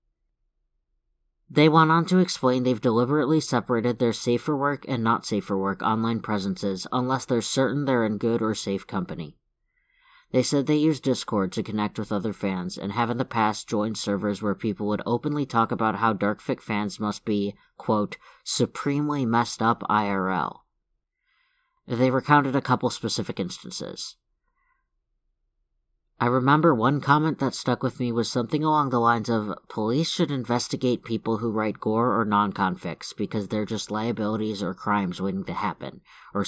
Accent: American